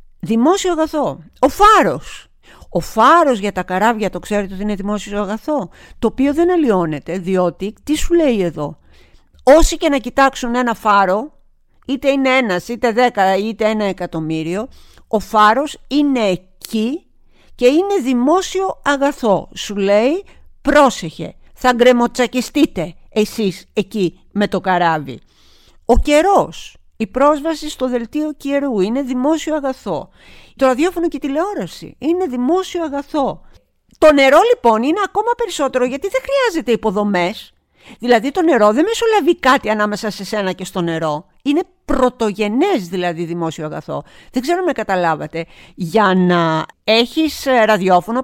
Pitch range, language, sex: 200-300 Hz, Greek, female